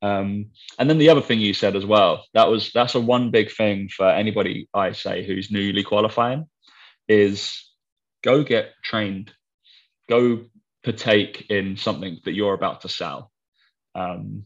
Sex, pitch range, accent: male, 100-115 Hz, British